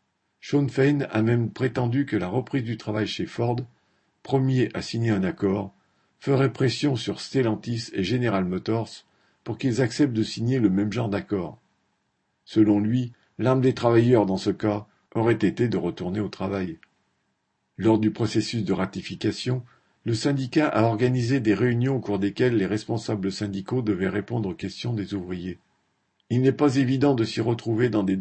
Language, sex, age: French, male, 50-69